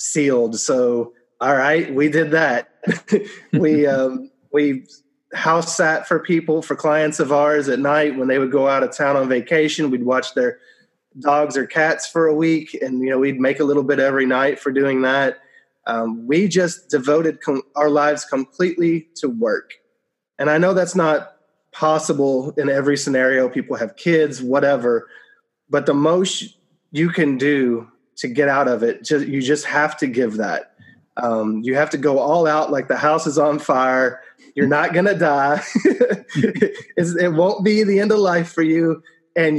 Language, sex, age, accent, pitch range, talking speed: English, male, 20-39, American, 135-165 Hz, 180 wpm